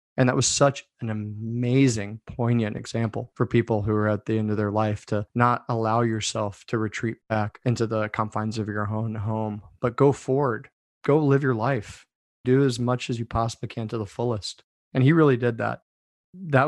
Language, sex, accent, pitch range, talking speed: English, male, American, 105-120 Hz, 200 wpm